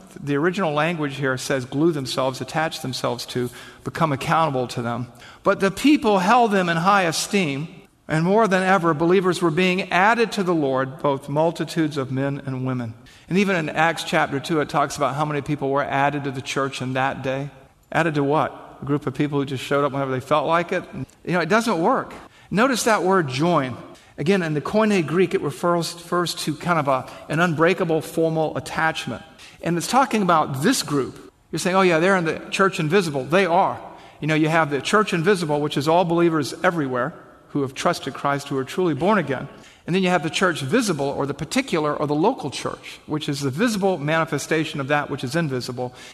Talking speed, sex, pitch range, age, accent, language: 210 wpm, male, 140-180 Hz, 50-69, American, English